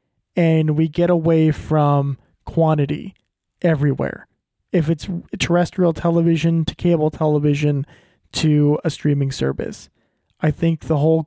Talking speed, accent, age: 115 wpm, American, 20-39